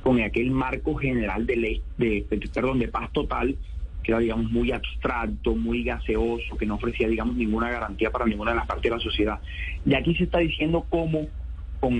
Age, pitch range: 30-49, 115-155 Hz